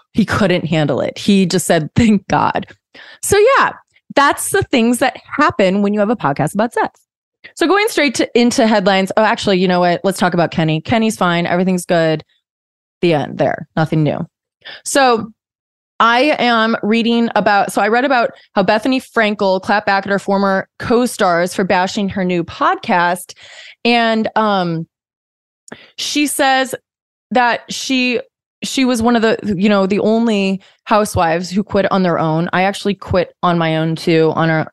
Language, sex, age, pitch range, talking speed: English, female, 20-39, 175-235 Hz, 175 wpm